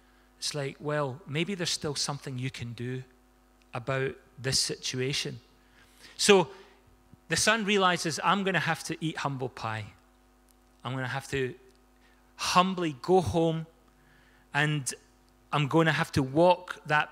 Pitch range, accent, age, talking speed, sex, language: 130-175 Hz, British, 30-49, 145 wpm, male, English